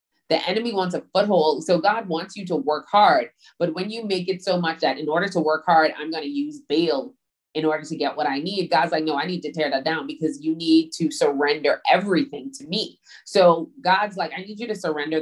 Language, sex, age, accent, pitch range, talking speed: English, female, 20-39, American, 155-190 Hz, 245 wpm